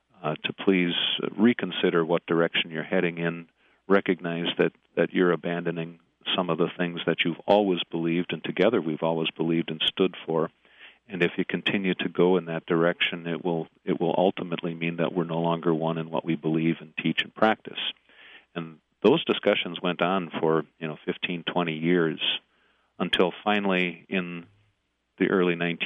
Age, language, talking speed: 50-69, English, 170 wpm